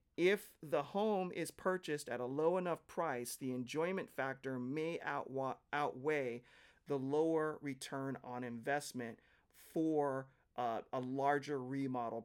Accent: American